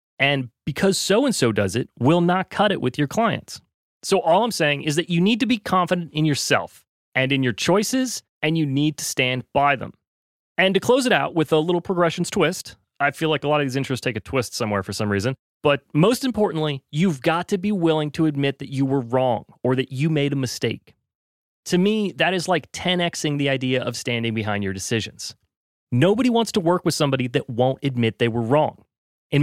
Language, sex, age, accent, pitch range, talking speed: English, male, 30-49, American, 130-175 Hz, 220 wpm